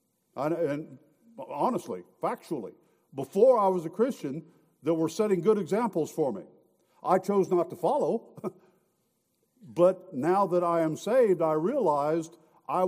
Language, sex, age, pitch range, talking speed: English, male, 50-69, 160-215 Hz, 140 wpm